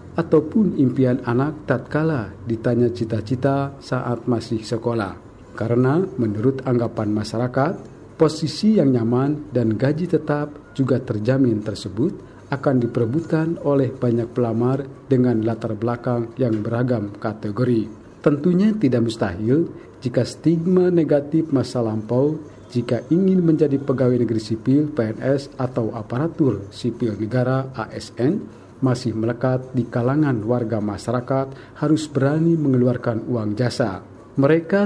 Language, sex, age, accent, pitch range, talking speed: Indonesian, male, 50-69, native, 115-145 Hz, 110 wpm